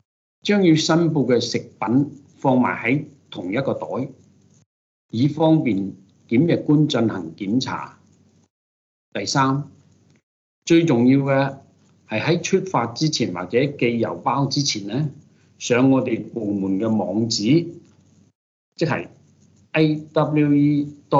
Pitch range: 115-150 Hz